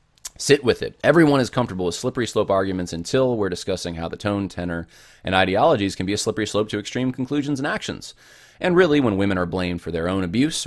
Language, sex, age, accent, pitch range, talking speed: English, male, 20-39, American, 85-125 Hz, 220 wpm